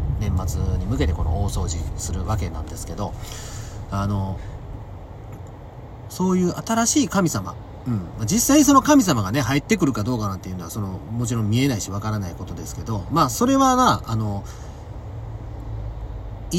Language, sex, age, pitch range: Japanese, male, 30-49, 100-140 Hz